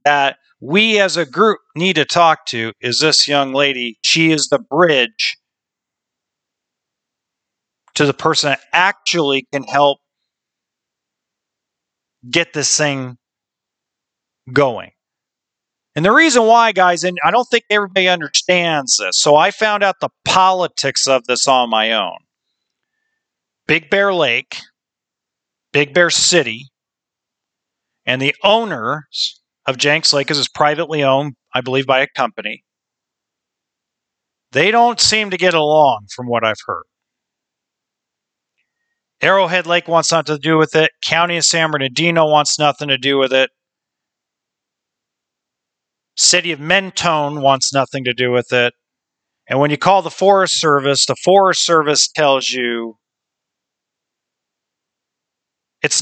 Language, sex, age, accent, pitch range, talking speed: English, male, 40-59, American, 135-180 Hz, 130 wpm